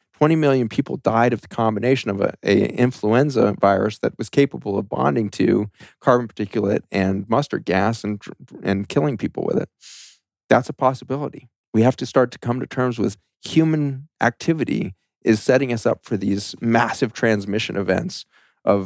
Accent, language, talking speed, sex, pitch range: American, English, 165 wpm, male, 105-125 Hz